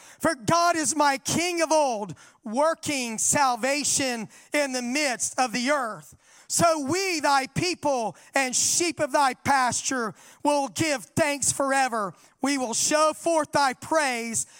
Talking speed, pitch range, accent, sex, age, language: 140 wpm, 255-310 Hz, American, male, 40-59, English